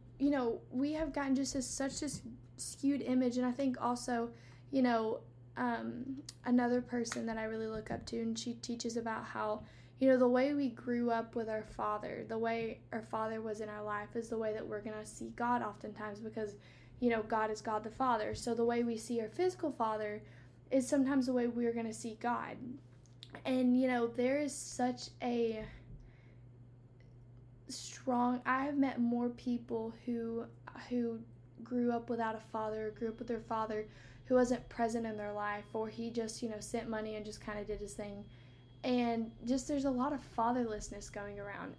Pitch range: 210-250 Hz